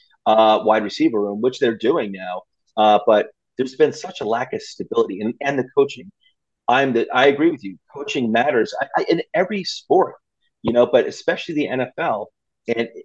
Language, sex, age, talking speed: English, male, 30-49, 190 wpm